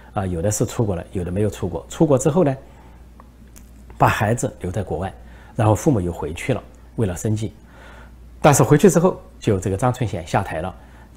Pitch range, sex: 85-115 Hz, male